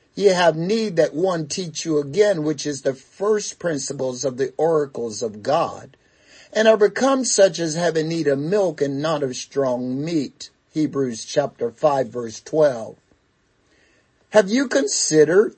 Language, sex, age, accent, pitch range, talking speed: English, male, 50-69, American, 140-205 Hz, 155 wpm